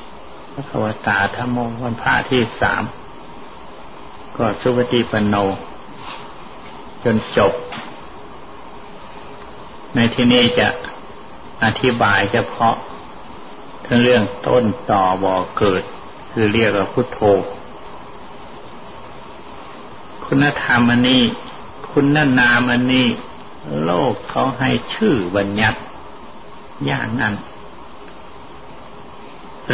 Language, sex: Thai, male